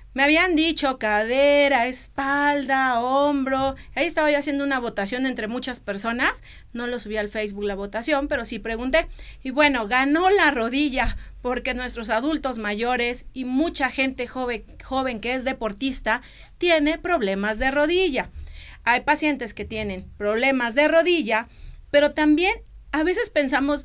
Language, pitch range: Spanish, 240-300 Hz